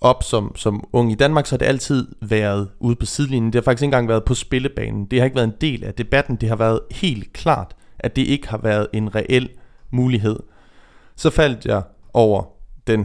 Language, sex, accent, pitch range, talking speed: Danish, male, native, 105-130 Hz, 220 wpm